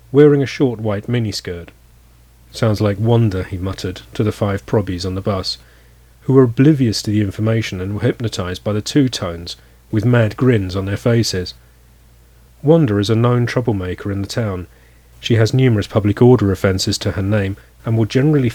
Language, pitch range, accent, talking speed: English, 90-120 Hz, British, 180 wpm